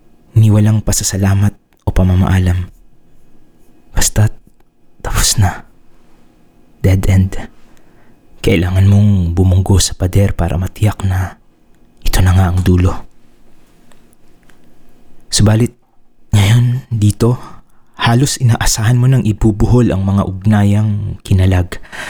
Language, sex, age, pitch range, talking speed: English, male, 20-39, 95-110 Hz, 95 wpm